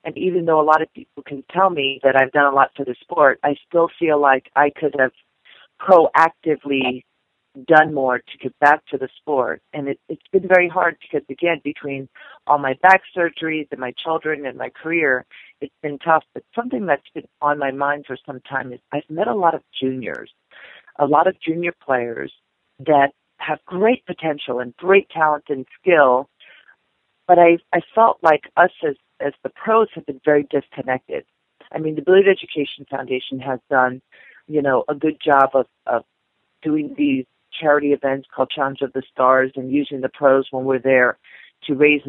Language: English